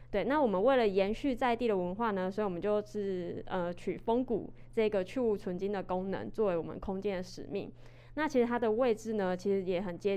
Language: Chinese